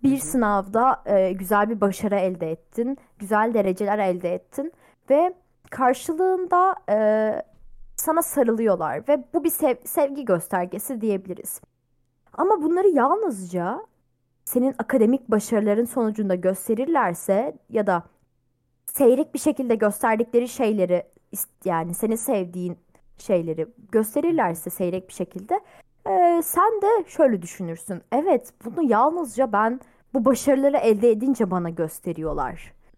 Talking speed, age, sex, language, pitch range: 115 wpm, 20-39, female, Turkish, 185-270 Hz